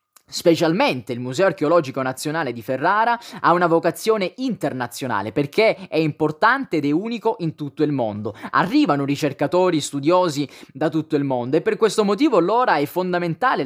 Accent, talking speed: native, 155 wpm